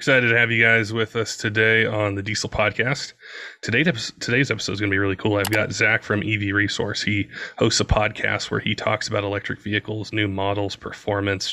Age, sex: 20-39, male